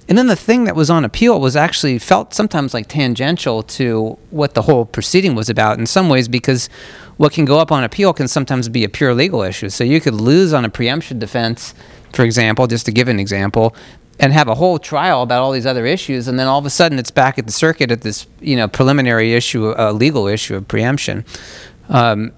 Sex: male